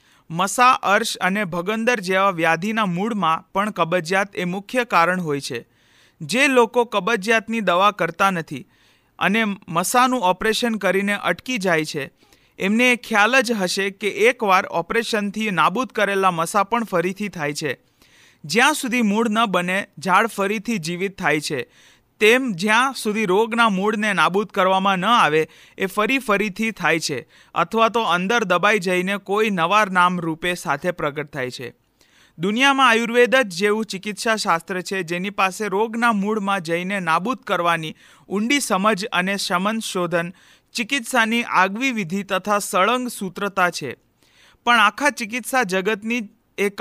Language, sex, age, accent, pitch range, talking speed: Gujarati, male, 40-59, native, 180-225 Hz, 110 wpm